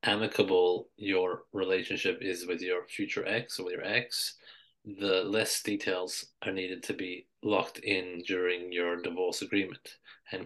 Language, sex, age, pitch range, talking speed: English, male, 30-49, 95-155 Hz, 150 wpm